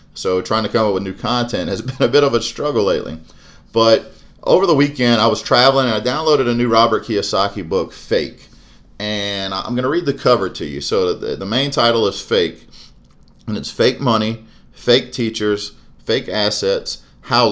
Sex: male